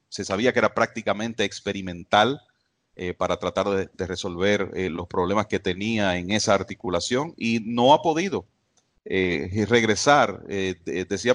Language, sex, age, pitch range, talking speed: English, male, 40-59, 100-120 Hz, 150 wpm